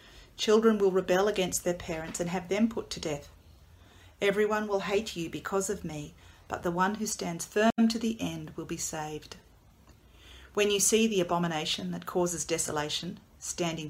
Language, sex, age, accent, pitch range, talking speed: English, female, 40-59, Australian, 150-200 Hz, 175 wpm